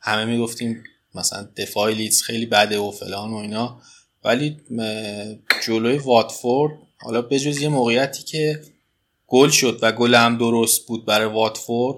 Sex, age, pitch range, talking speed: male, 20-39, 110-130 Hz, 135 wpm